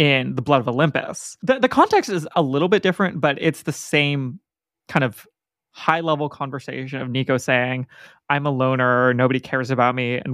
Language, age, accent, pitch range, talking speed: English, 20-39, American, 130-175 Hz, 185 wpm